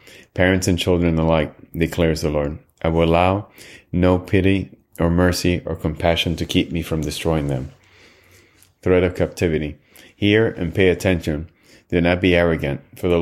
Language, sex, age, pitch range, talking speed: English, male, 30-49, 80-90 Hz, 160 wpm